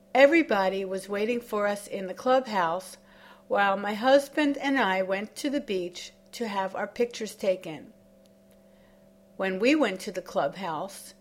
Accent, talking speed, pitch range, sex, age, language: American, 150 wpm, 185-230 Hz, female, 50-69, English